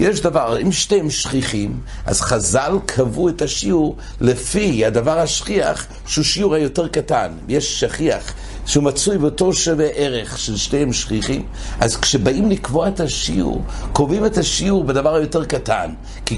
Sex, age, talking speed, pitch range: male, 60-79, 130 wpm, 115-180 Hz